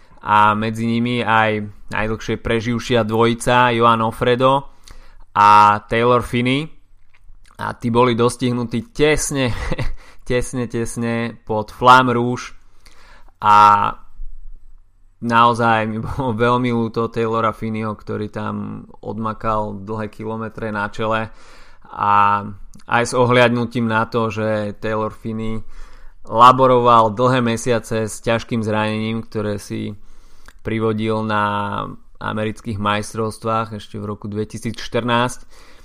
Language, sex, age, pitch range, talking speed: Slovak, male, 20-39, 105-120 Hz, 105 wpm